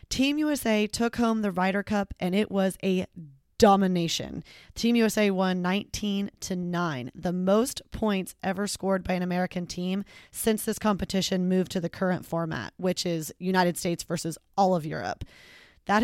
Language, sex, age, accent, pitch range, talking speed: English, female, 20-39, American, 185-215 Hz, 160 wpm